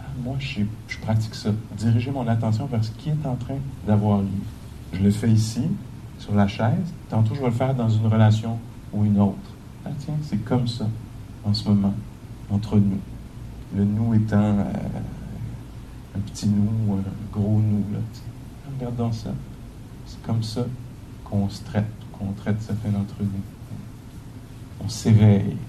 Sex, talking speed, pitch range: male, 160 wpm, 105-115 Hz